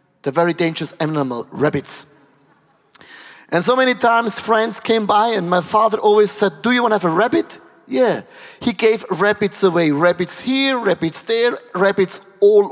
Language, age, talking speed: English, 30-49, 165 wpm